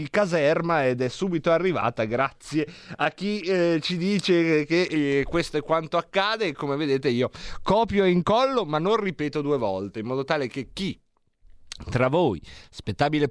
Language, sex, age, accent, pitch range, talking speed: Italian, male, 30-49, native, 135-180 Hz, 160 wpm